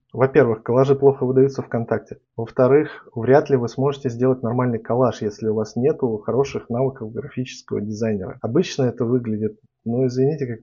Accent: native